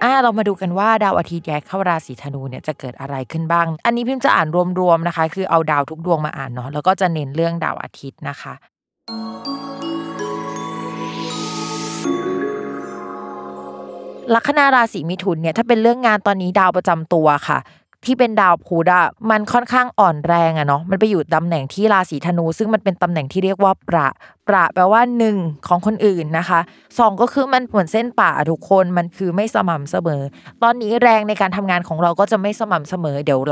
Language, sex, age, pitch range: Thai, female, 20-39, 160-220 Hz